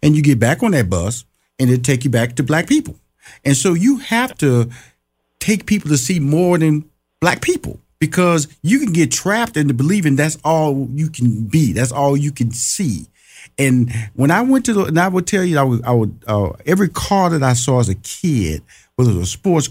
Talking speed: 225 wpm